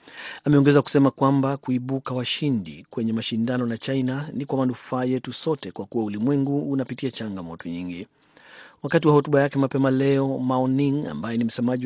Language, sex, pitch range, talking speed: Swahili, male, 115-135 Hz, 150 wpm